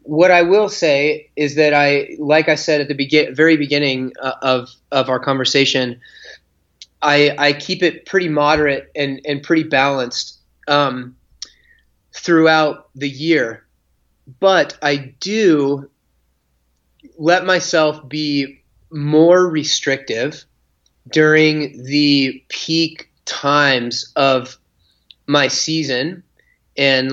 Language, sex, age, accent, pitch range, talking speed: English, male, 30-49, American, 125-155 Hz, 110 wpm